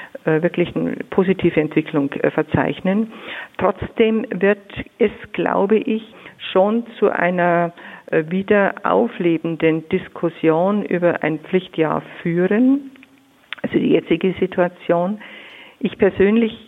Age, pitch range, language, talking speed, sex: 50-69, 160-195 Hz, German, 95 wpm, female